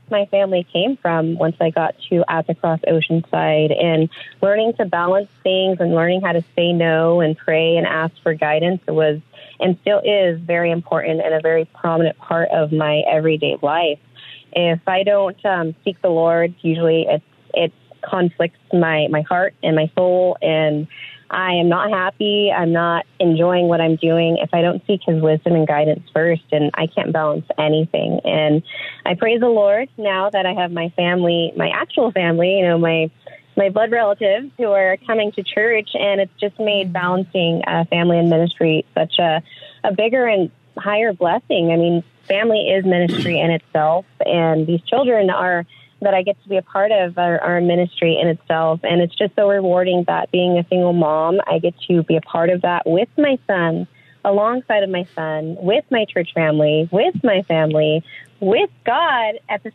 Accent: American